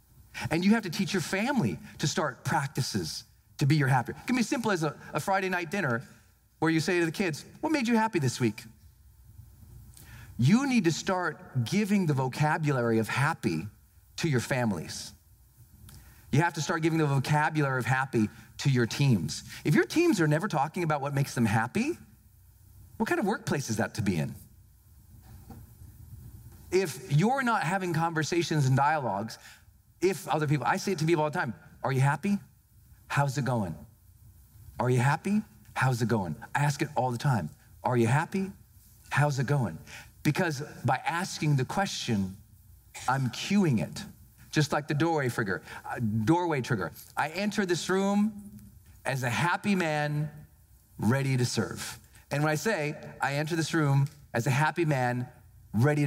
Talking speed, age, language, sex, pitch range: 170 wpm, 40-59, English, male, 110-165 Hz